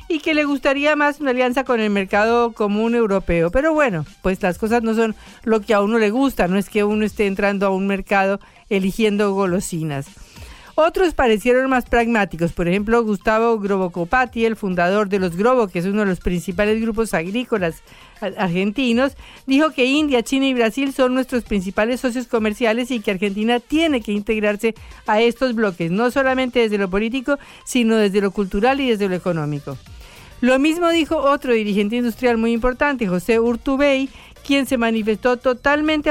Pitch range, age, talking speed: 205-255 Hz, 50-69, 175 wpm